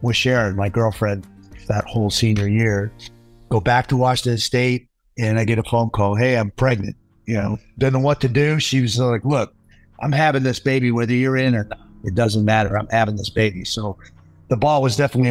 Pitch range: 110-125 Hz